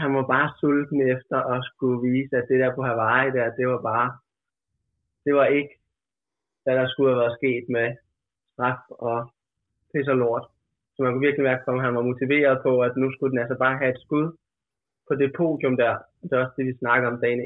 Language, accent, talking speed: Danish, native, 215 wpm